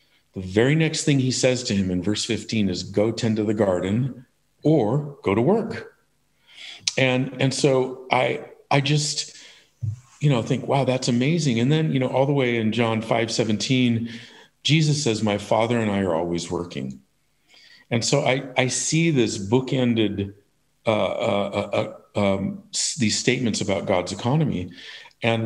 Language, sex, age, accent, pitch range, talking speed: English, male, 50-69, American, 105-130 Hz, 165 wpm